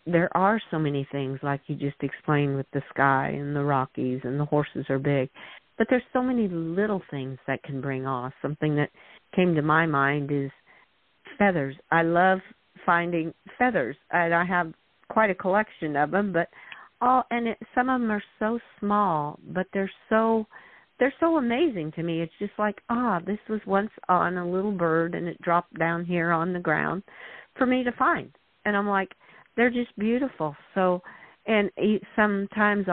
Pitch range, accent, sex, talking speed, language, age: 145-210 Hz, American, female, 185 wpm, English, 50-69